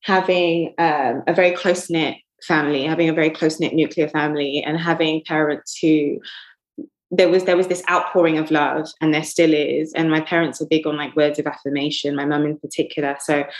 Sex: female